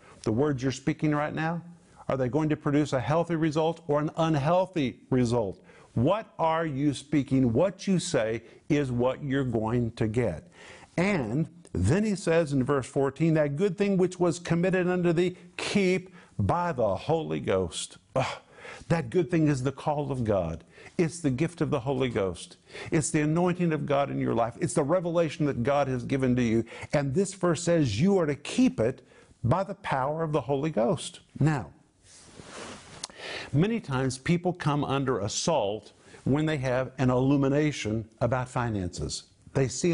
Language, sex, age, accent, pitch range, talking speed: English, male, 50-69, American, 125-165 Hz, 175 wpm